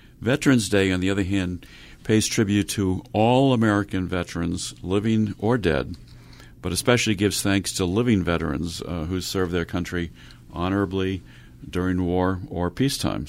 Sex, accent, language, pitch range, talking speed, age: male, American, English, 85-105 Hz, 145 wpm, 50-69